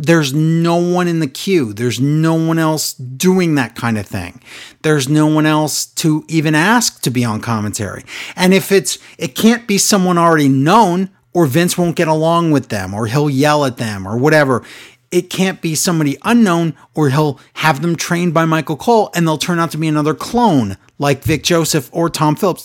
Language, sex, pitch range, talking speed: English, male, 130-185 Hz, 200 wpm